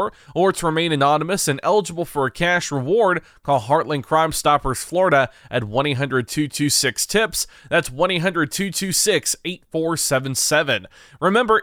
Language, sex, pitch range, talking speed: English, male, 145-190 Hz, 135 wpm